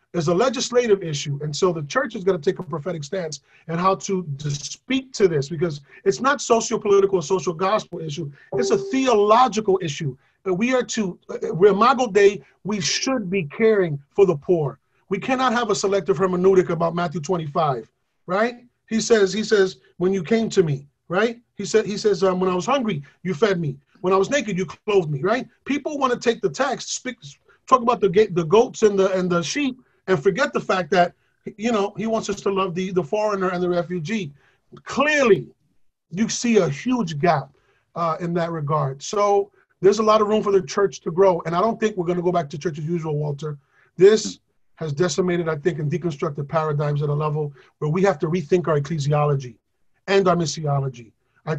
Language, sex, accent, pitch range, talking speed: English, male, American, 160-210 Hz, 210 wpm